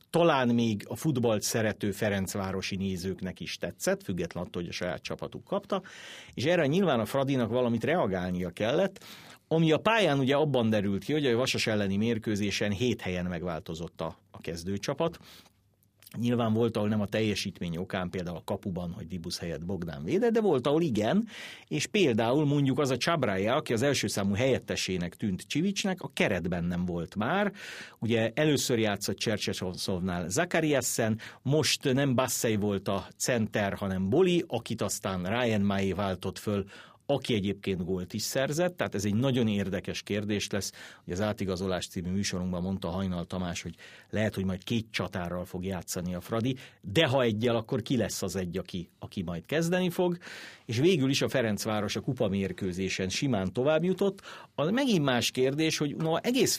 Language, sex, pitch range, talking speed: Hungarian, male, 95-140 Hz, 170 wpm